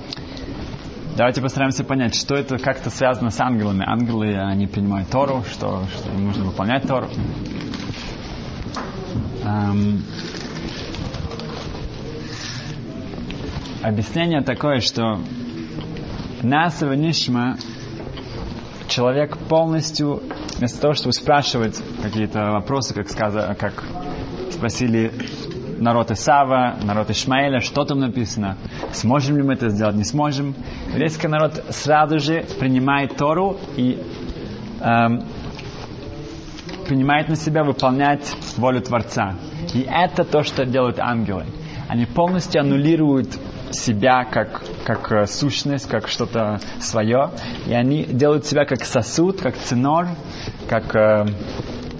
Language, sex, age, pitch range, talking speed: Russian, male, 20-39, 110-145 Hz, 105 wpm